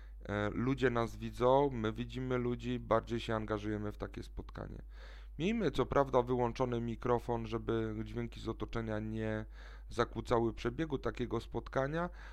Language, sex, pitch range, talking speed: Polish, male, 110-130 Hz, 125 wpm